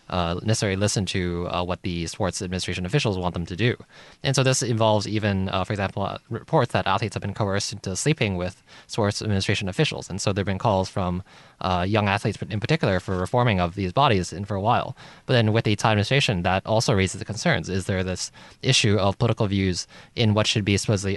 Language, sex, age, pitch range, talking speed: English, male, 20-39, 95-120 Hz, 225 wpm